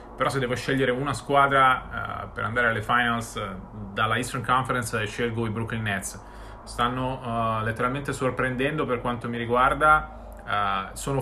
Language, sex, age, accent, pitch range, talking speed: Italian, male, 30-49, native, 120-140 Hz, 135 wpm